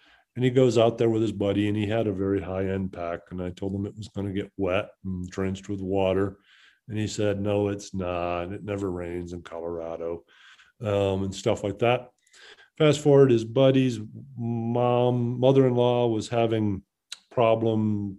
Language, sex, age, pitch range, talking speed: English, male, 40-59, 100-115 Hz, 180 wpm